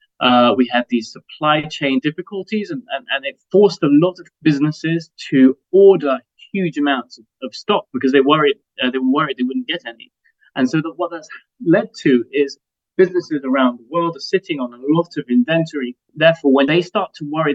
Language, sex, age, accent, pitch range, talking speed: English, male, 20-39, British, 130-180 Hz, 200 wpm